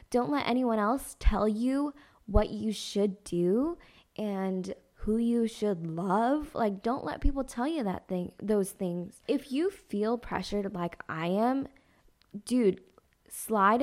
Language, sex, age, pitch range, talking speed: English, female, 10-29, 190-235 Hz, 150 wpm